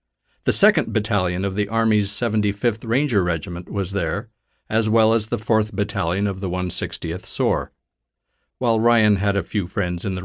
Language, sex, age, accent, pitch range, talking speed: English, male, 50-69, American, 90-120 Hz, 170 wpm